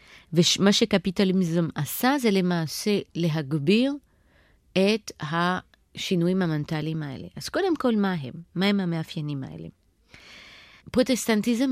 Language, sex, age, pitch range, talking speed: Hebrew, female, 30-49, 165-220 Hz, 100 wpm